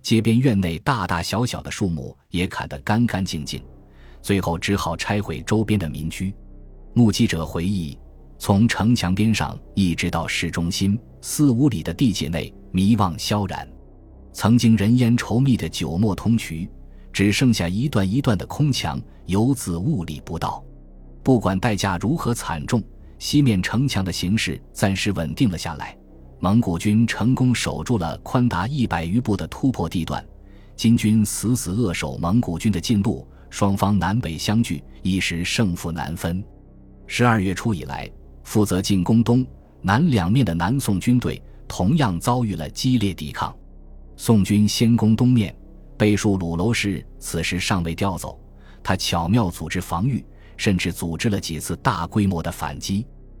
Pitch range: 85-115 Hz